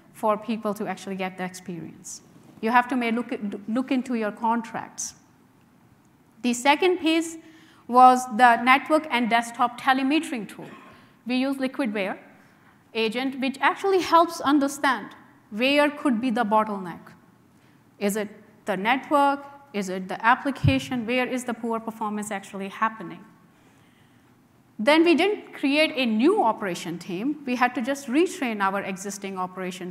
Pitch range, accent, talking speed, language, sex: 205-275 Hz, Indian, 140 wpm, English, female